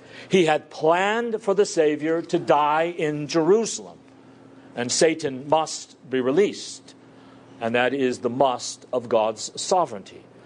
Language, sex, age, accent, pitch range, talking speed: English, male, 50-69, American, 130-175 Hz, 130 wpm